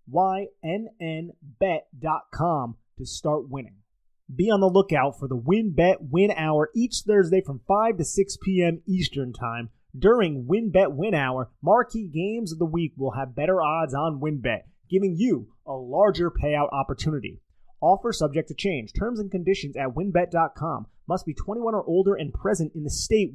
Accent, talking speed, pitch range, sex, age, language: American, 160 wpm, 120-185 Hz, male, 30-49, English